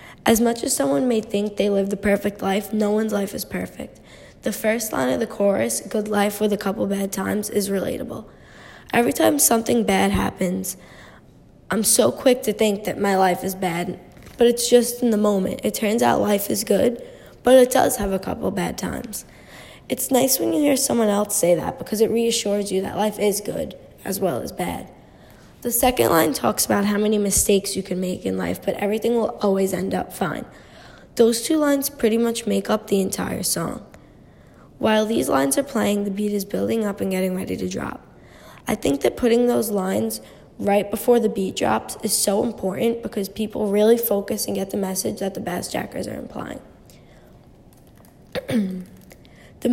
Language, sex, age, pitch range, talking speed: English, female, 10-29, 195-230 Hz, 195 wpm